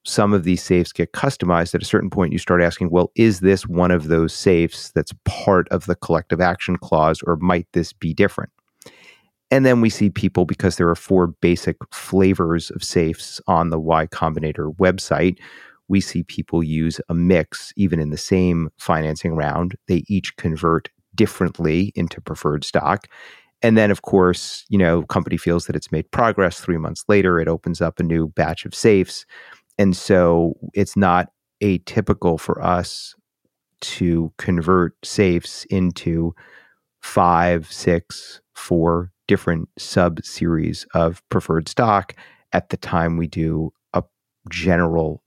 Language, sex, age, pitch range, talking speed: English, male, 40-59, 85-95 Hz, 155 wpm